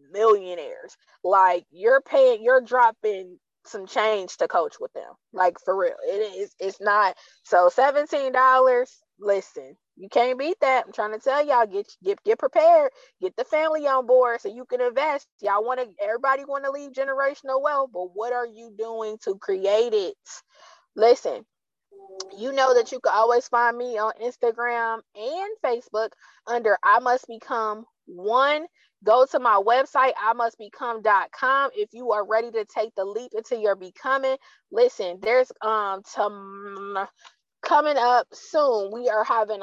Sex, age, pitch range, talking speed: female, 20-39, 215-280 Hz, 160 wpm